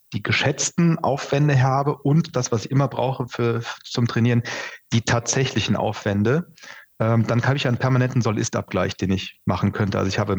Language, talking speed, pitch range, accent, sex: German, 180 wpm, 110-130 Hz, German, male